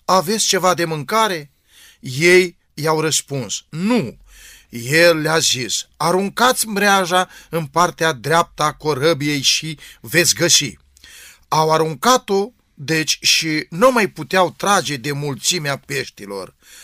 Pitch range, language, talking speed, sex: 150-195 Hz, Romanian, 110 wpm, male